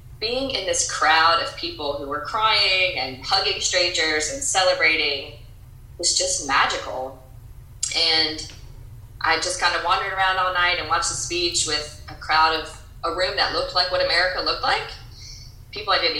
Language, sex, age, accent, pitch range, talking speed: English, female, 20-39, American, 120-180 Hz, 170 wpm